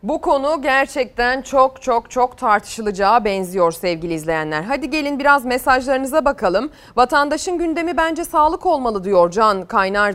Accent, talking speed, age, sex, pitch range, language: native, 135 wpm, 30-49, female, 200-275 Hz, Turkish